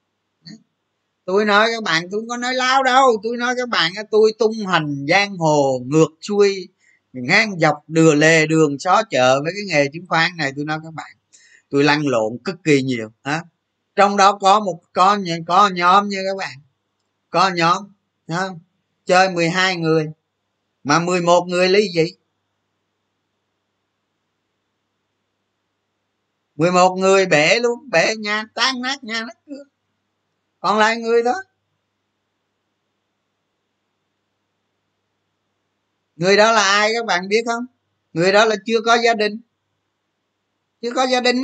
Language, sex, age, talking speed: Vietnamese, male, 20-39, 140 wpm